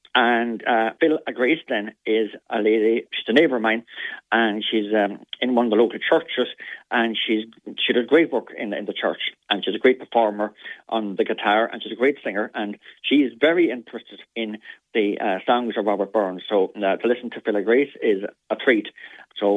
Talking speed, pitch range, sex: 215 wpm, 105-125 Hz, male